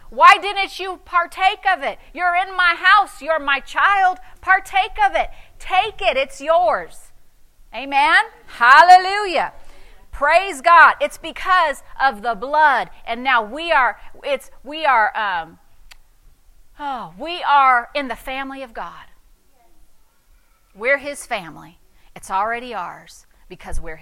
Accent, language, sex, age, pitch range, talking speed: American, English, female, 40-59, 225-325 Hz, 130 wpm